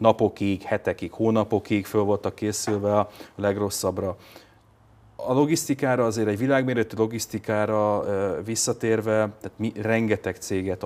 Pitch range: 95-115 Hz